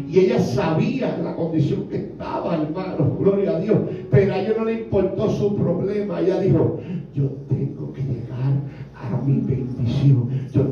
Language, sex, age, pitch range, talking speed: English, male, 60-79, 135-200 Hz, 160 wpm